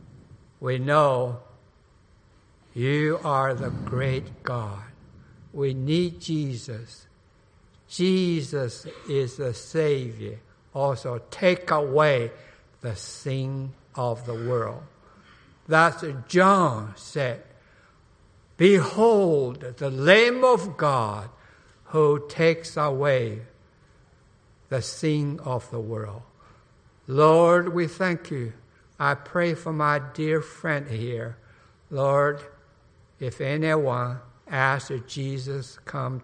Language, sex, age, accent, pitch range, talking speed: English, male, 60-79, American, 115-150 Hz, 95 wpm